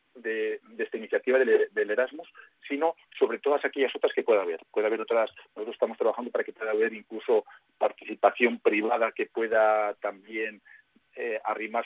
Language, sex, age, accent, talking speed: Spanish, male, 40-59, Spanish, 165 wpm